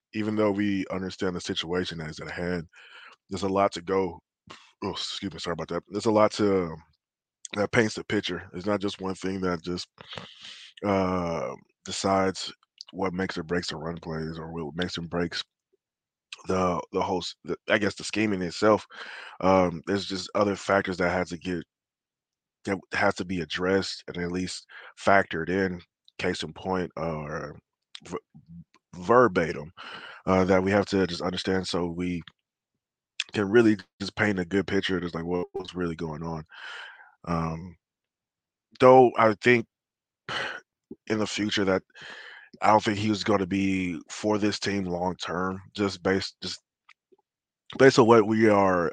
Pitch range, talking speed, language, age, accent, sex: 85-100 Hz, 165 wpm, English, 20-39, American, male